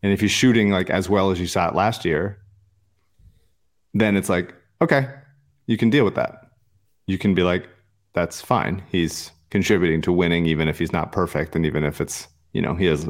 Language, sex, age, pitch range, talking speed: English, male, 30-49, 85-110 Hz, 205 wpm